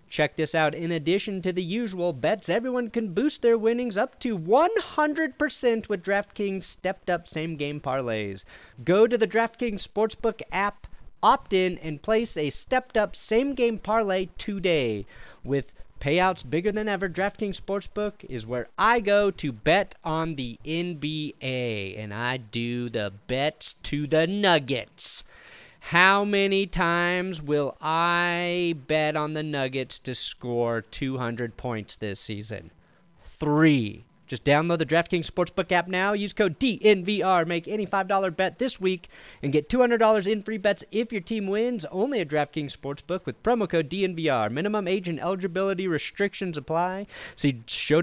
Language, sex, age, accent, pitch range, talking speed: English, male, 30-49, American, 145-205 Hz, 145 wpm